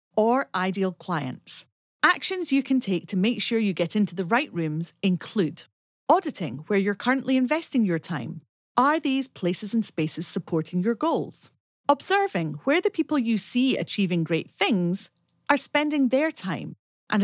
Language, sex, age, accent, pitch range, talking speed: English, female, 40-59, British, 185-290 Hz, 160 wpm